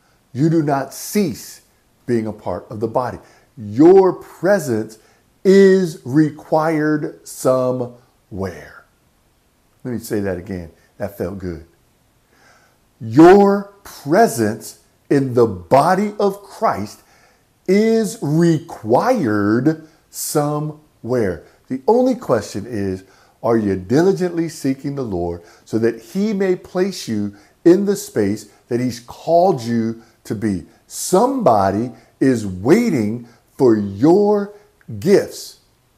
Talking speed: 105 wpm